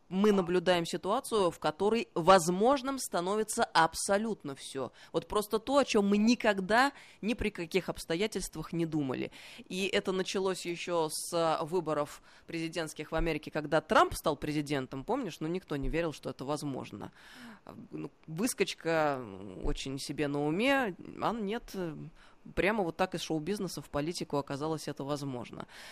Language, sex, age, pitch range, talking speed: Russian, female, 20-39, 155-200 Hz, 140 wpm